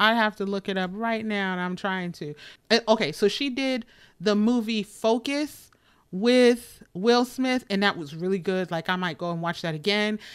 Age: 30-49